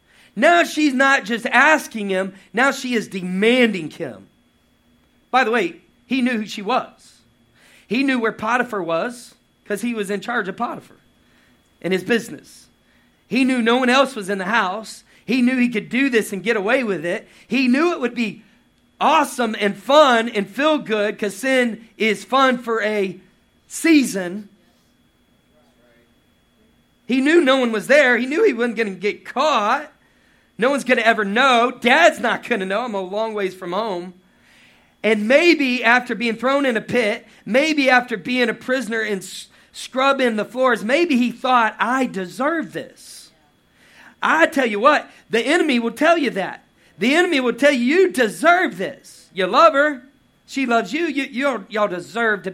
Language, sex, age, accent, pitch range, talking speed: English, male, 40-59, American, 210-265 Hz, 175 wpm